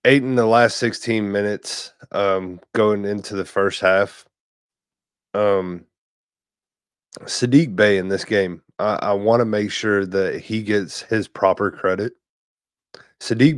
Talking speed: 135 wpm